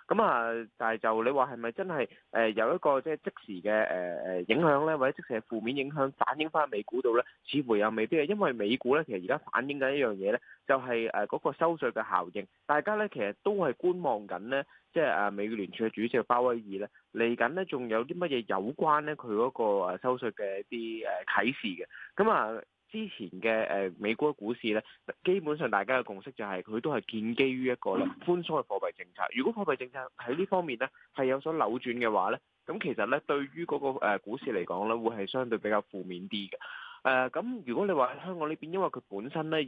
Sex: male